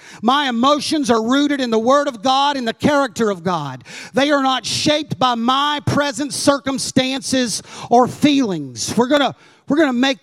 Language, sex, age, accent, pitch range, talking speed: English, male, 40-59, American, 230-295 Hz, 175 wpm